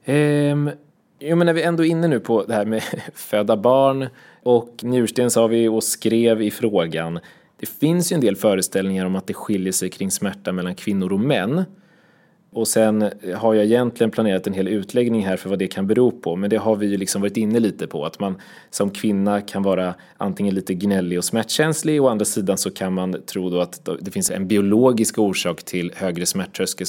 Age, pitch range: 20-39, 95-120 Hz